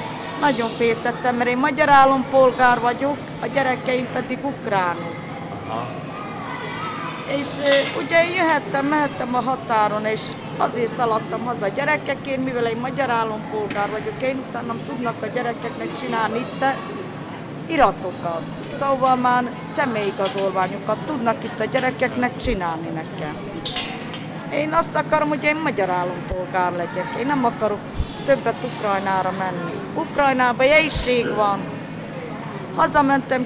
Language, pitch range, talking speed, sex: Hungarian, 230-280 Hz, 115 wpm, female